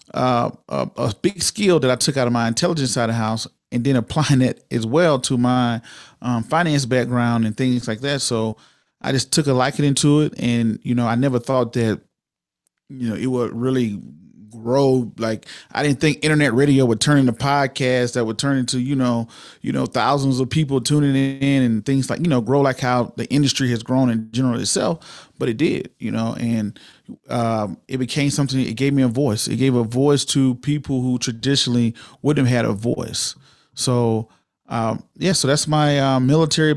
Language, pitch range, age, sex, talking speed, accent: English, 120-140 Hz, 30-49, male, 205 wpm, American